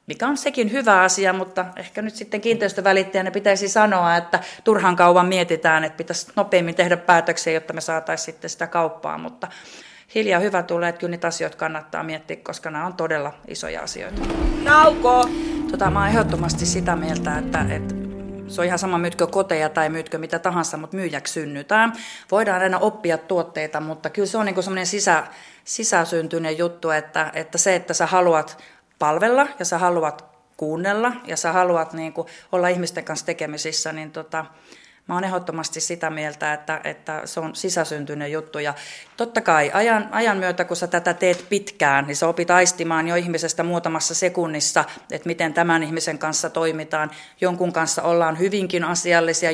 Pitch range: 160-185 Hz